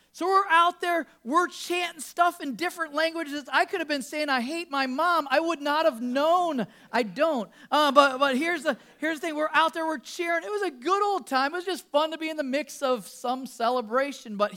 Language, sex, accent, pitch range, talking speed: English, male, American, 210-300 Hz, 240 wpm